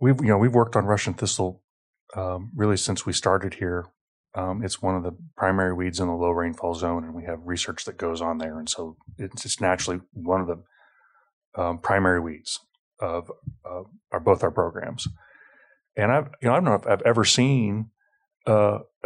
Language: English